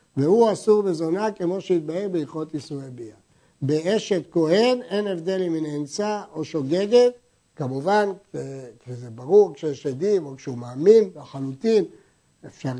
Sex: male